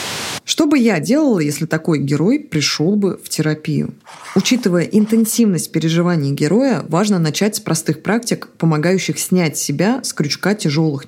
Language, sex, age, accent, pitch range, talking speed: Russian, female, 20-39, native, 150-205 Hz, 140 wpm